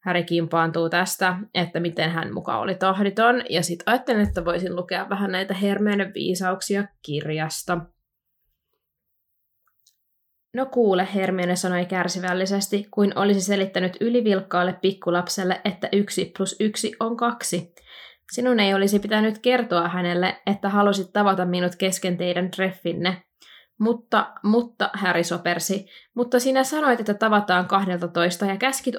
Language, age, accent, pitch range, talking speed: Finnish, 20-39, native, 180-205 Hz, 125 wpm